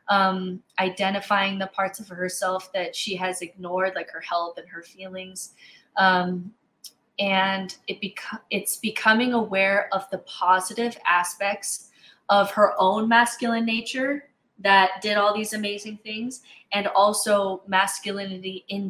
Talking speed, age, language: 125 wpm, 20-39, English